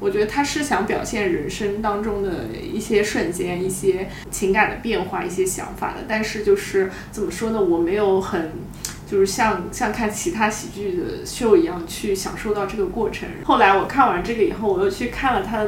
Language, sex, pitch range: Chinese, female, 190-225 Hz